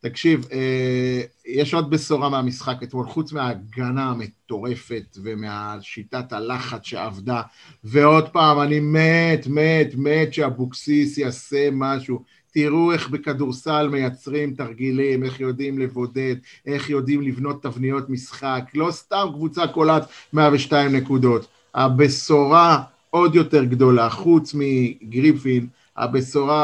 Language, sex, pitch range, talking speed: Hebrew, male, 125-150 Hz, 105 wpm